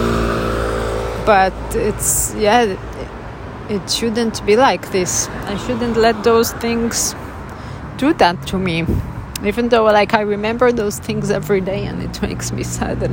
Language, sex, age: English, female, 30-49